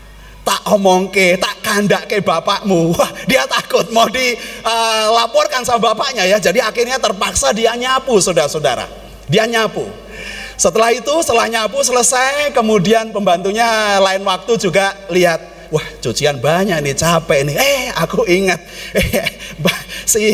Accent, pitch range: native, 195-265 Hz